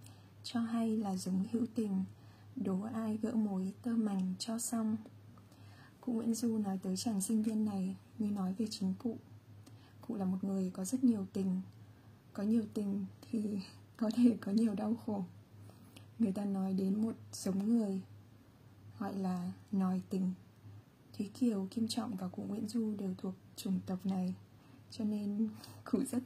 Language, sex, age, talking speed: Vietnamese, female, 20-39, 170 wpm